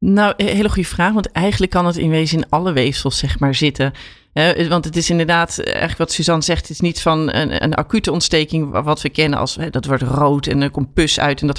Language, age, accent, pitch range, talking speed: Dutch, 40-59, Dutch, 150-185 Hz, 215 wpm